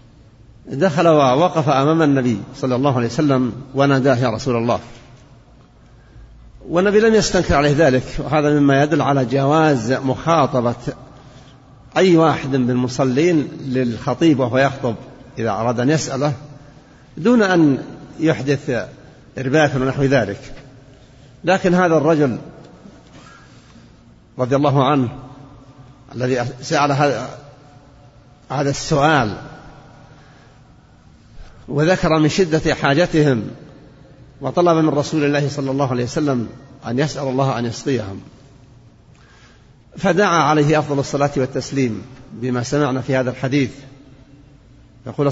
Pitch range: 130-150 Hz